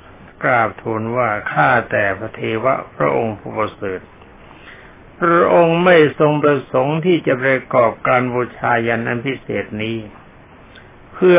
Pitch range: 115-150 Hz